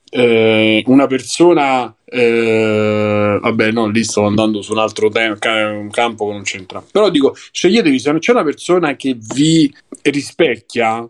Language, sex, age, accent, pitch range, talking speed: Italian, male, 20-39, native, 110-140 Hz, 155 wpm